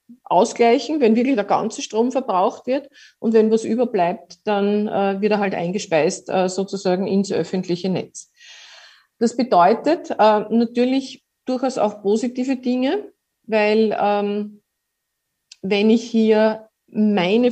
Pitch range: 195-230 Hz